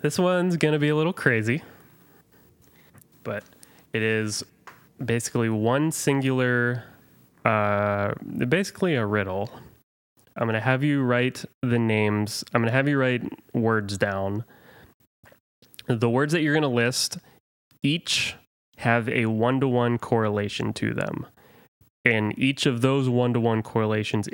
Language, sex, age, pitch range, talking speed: English, male, 20-39, 105-130 Hz, 135 wpm